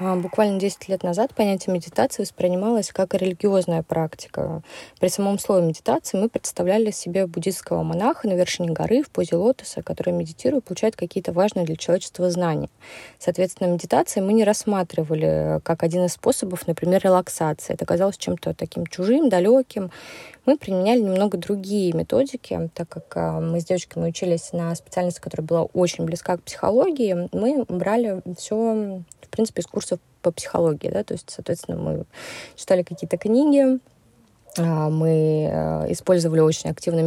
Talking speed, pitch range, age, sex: 145 wpm, 170-210 Hz, 20-39, female